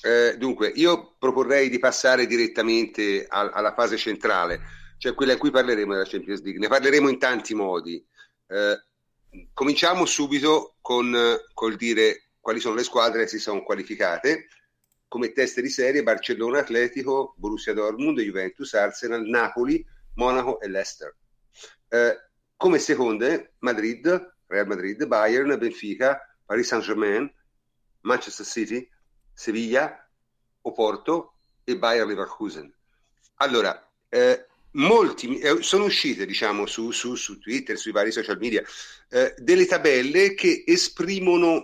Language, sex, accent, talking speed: Italian, male, native, 125 wpm